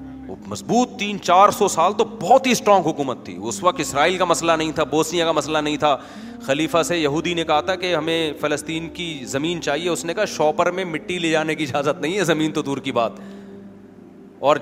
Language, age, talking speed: Urdu, 30-49, 220 wpm